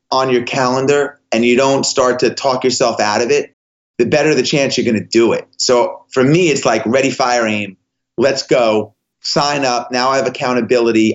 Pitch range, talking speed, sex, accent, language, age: 120-145 Hz, 205 wpm, male, American, English, 30-49